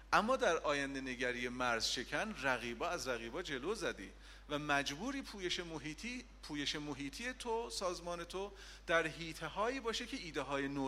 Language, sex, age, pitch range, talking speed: Persian, male, 40-59, 145-205 Hz, 155 wpm